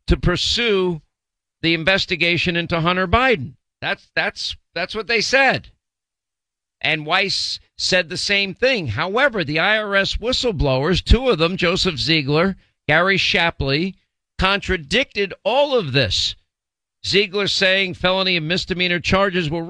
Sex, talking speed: male, 125 wpm